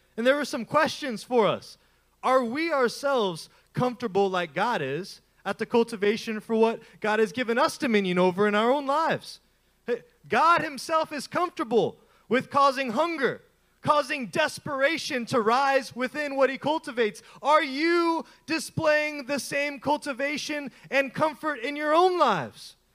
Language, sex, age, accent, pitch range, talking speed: English, male, 20-39, American, 225-295 Hz, 145 wpm